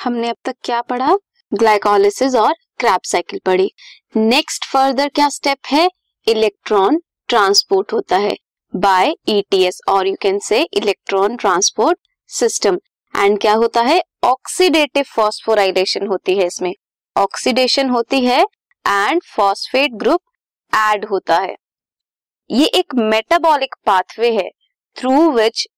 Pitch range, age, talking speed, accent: 210-340 Hz, 20-39, 125 wpm, native